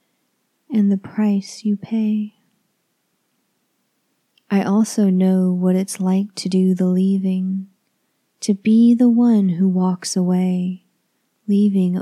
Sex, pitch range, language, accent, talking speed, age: female, 180-210 Hz, English, American, 115 wpm, 30-49